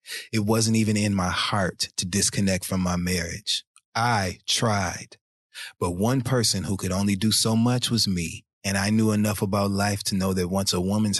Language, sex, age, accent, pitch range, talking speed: English, male, 30-49, American, 95-110 Hz, 195 wpm